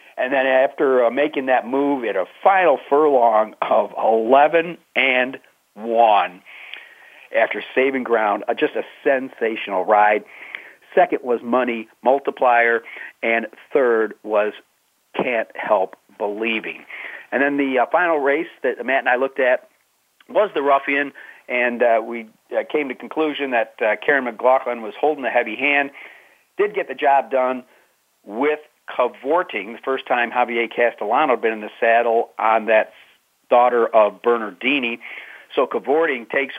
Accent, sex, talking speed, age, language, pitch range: American, male, 145 wpm, 50-69, English, 115-140 Hz